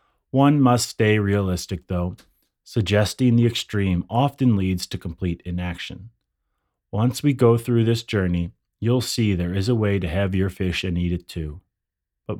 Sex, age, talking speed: male, 30-49, 165 wpm